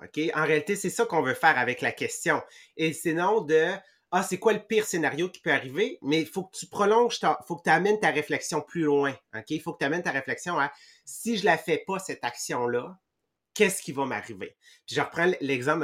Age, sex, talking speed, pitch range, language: 30-49, male, 240 wpm, 140-185 Hz, English